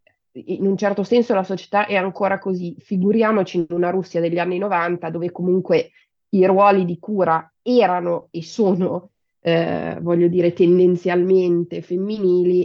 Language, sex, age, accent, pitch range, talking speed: Italian, female, 30-49, native, 175-205 Hz, 140 wpm